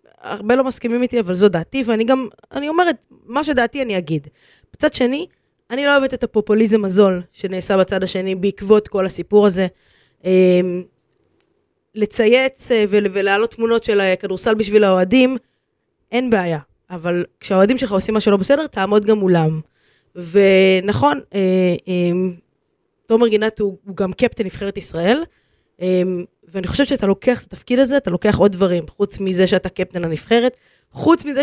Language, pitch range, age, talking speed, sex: Hebrew, 190-240 Hz, 20-39, 155 wpm, female